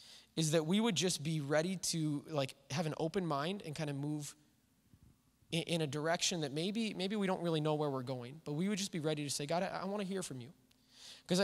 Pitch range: 150-190 Hz